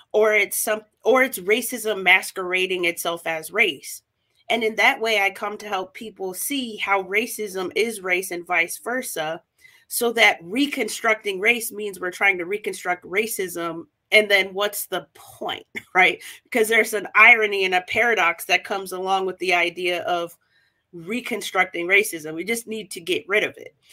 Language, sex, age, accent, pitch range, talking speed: English, female, 30-49, American, 180-225 Hz, 170 wpm